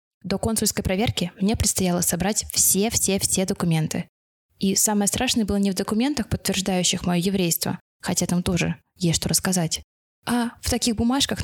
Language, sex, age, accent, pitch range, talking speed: Russian, female, 20-39, native, 180-215 Hz, 145 wpm